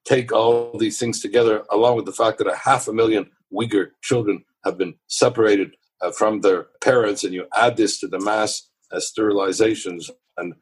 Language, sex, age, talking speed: English, male, 60-79, 185 wpm